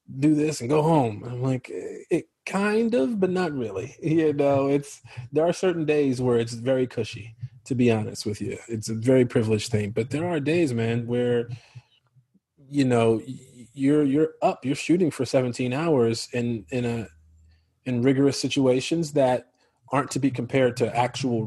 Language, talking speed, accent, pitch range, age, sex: English, 175 wpm, American, 125-155 Hz, 30-49, male